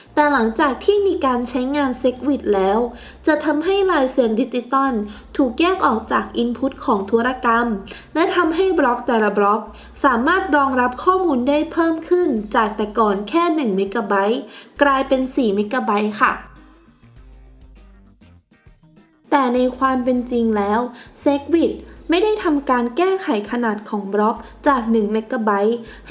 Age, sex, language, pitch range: 20-39, female, Thai, 220-300 Hz